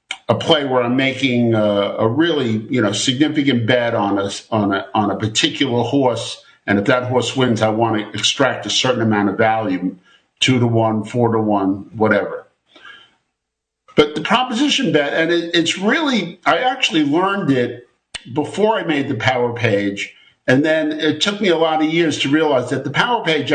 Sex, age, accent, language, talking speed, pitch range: male, 50-69, American, English, 190 wpm, 115-155 Hz